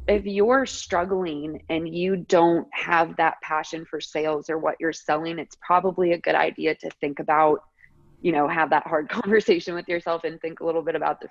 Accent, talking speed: American, 200 wpm